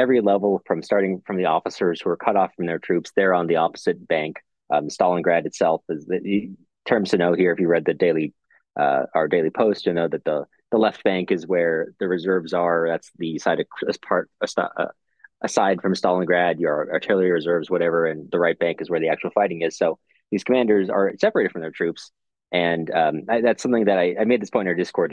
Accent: American